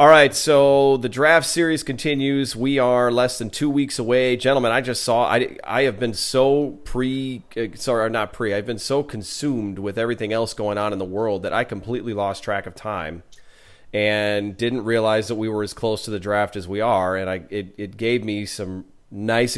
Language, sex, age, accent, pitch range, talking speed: English, male, 30-49, American, 105-125 Hz, 210 wpm